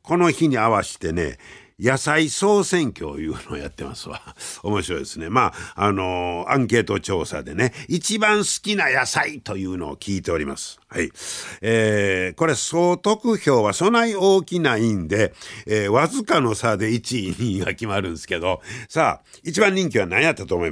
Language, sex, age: Japanese, male, 60-79